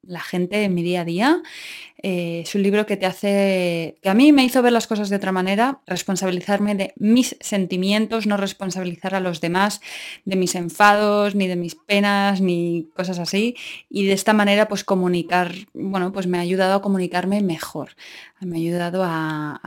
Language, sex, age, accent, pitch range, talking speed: Spanish, female, 20-39, Spanish, 180-225 Hz, 190 wpm